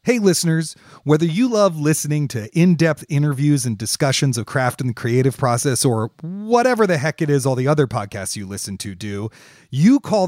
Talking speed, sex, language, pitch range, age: 200 wpm, male, English, 125-175 Hz, 40-59